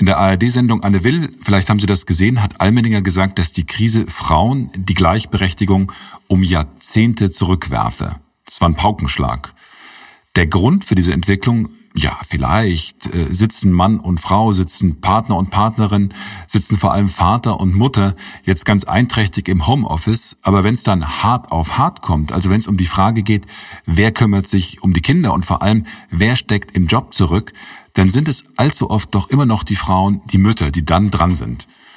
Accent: German